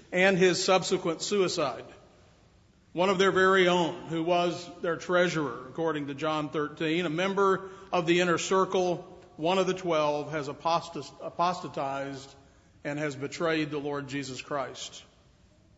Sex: male